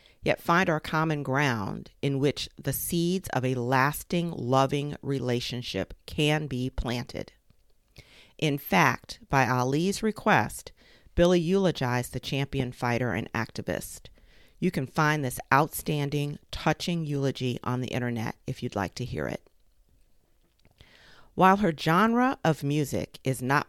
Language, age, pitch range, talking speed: English, 40-59, 125-155 Hz, 130 wpm